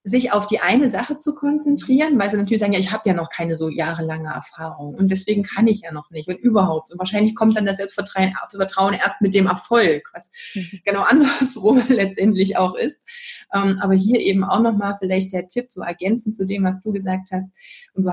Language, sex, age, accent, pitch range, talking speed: German, female, 20-39, German, 185-235 Hz, 210 wpm